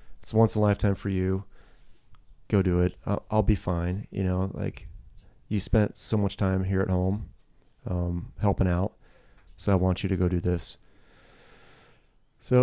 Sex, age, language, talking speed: male, 30-49, English, 175 wpm